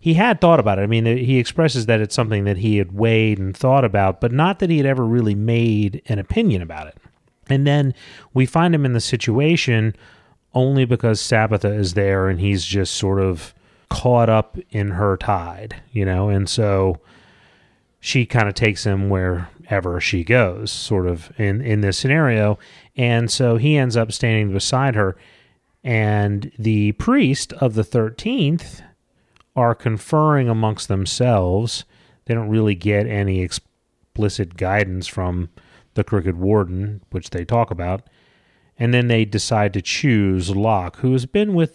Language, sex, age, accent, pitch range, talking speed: English, male, 30-49, American, 100-125 Hz, 165 wpm